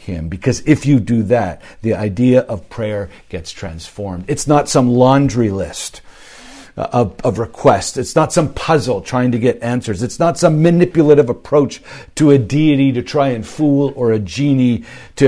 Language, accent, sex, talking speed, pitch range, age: English, American, male, 175 wpm, 105-140 Hz, 50-69